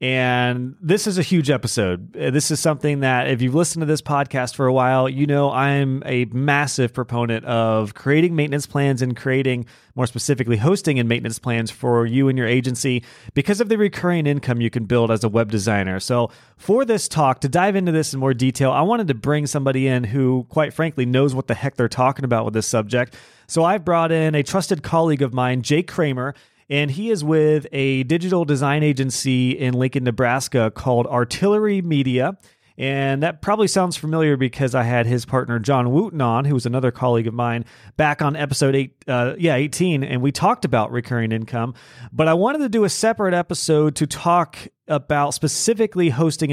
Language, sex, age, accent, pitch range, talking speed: English, male, 30-49, American, 125-155 Hz, 200 wpm